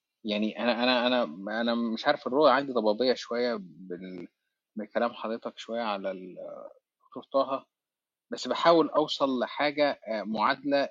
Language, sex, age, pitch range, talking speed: Arabic, male, 30-49, 110-150 Hz, 115 wpm